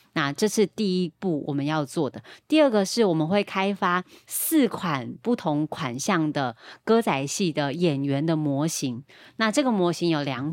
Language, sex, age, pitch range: Chinese, female, 30-49, 150-205 Hz